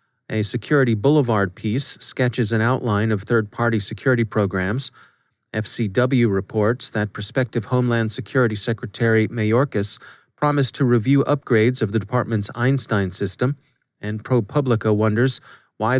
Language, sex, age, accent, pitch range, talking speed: English, male, 30-49, American, 110-130 Hz, 120 wpm